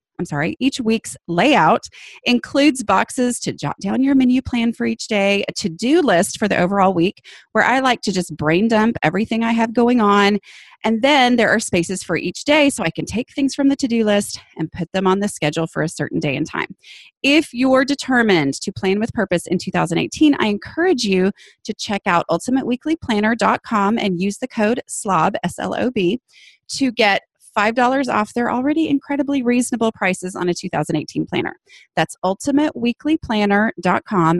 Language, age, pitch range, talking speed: English, 30-49, 190-270 Hz, 180 wpm